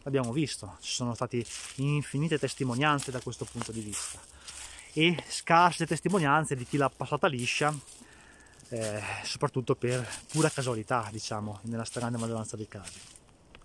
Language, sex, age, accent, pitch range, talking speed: Italian, male, 20-39, native, 125-170 Hz, 135 wpm